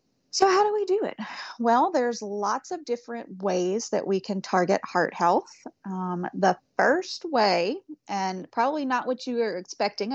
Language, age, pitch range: English, 30-49, 190-245 Hz